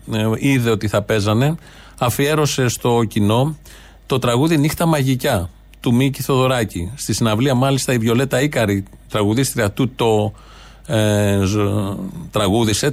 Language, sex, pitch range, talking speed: Greek, male, 115-150 Hz, 115 wpm